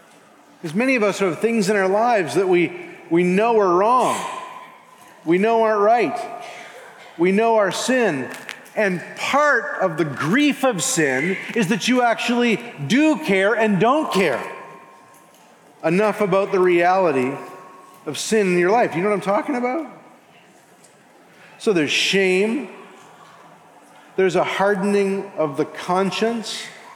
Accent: American